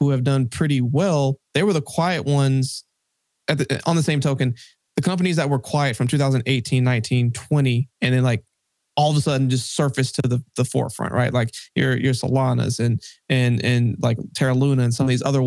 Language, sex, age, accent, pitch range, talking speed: English, male, 20-39, American, 125-145 Hz, 210 wpm